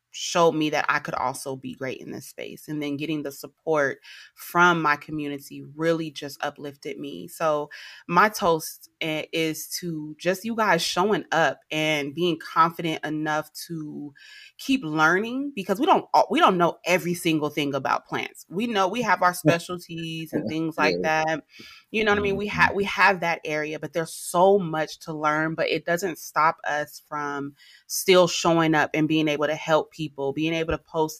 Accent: American